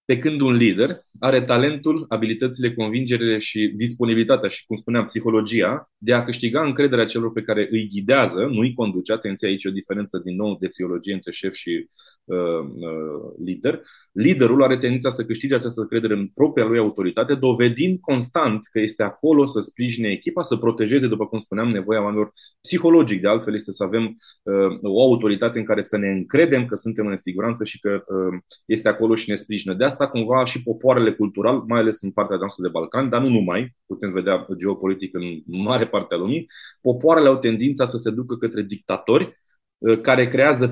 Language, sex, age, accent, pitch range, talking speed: Romanian, male, 20-39, native, 105-130 Hz, 185 wpm